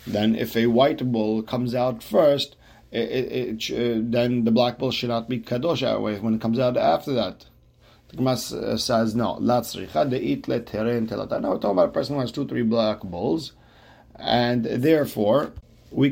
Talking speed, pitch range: 170 wpm, 105-120 Hz